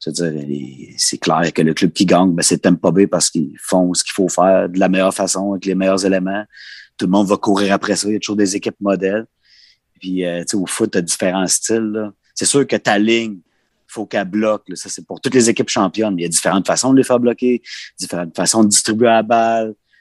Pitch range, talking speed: 95-115 Hz, 245 wpm